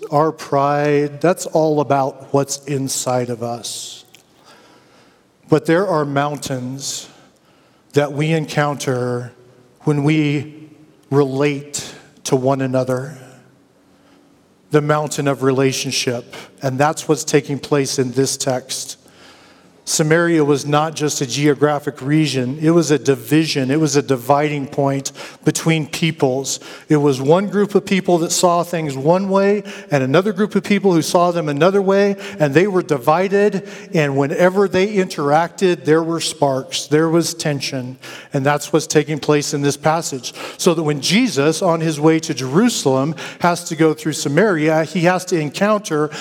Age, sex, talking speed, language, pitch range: 50-69, male, 145 wpm, English, 140-165 Hz